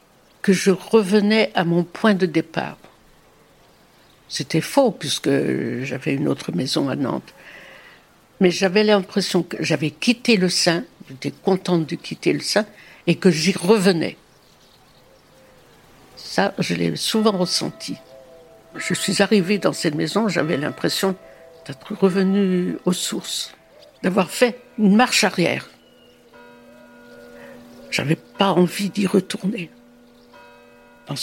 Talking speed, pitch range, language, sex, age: 120 wpm, 130-210 Hz, French, female, 60-79